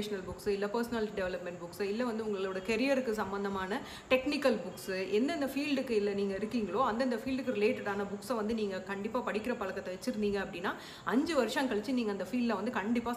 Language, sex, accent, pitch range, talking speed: Tamil, female, native, 200-245 Hz, 180 wpm